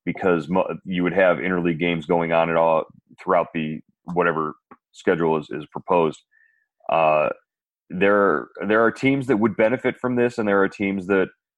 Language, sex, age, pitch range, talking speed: English, male, 30-49, 85-100 Hz, 170 wpm